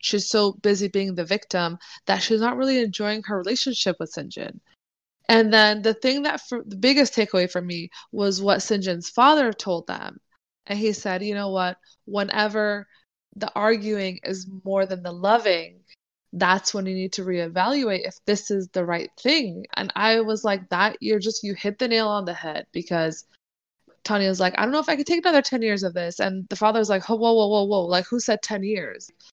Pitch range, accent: 185-225 Hz, American